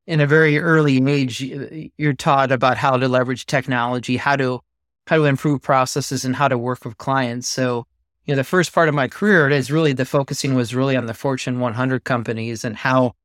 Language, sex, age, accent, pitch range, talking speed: English, male, 30-49, American, 120-135 Hz, 210 wpm